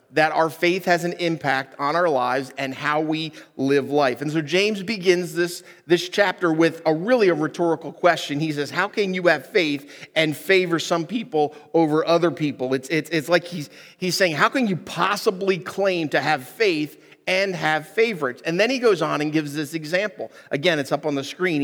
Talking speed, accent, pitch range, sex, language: 205 wpm, American, 145-190 Hz, male, English